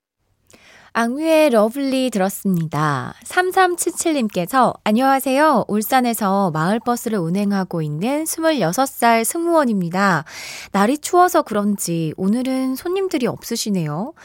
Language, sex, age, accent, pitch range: Korean, female, 20-39, native, 185-275 Hz